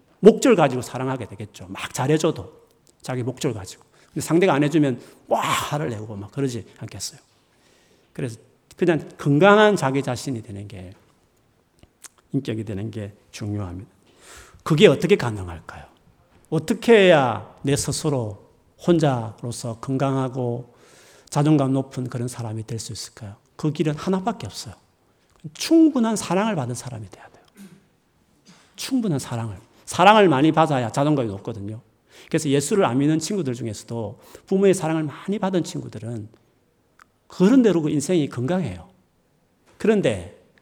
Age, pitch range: 40-59, 115-165 Hz